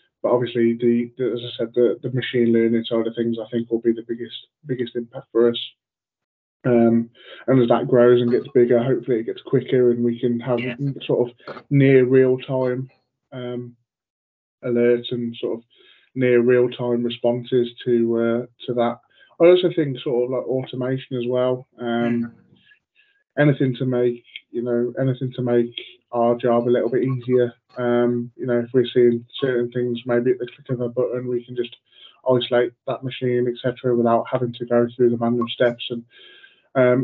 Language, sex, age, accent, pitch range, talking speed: English, male, 20-39, British, 120-130 Hz, 185 wpm